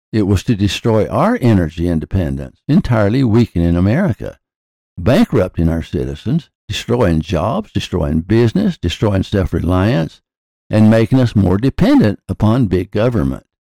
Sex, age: male, 60-79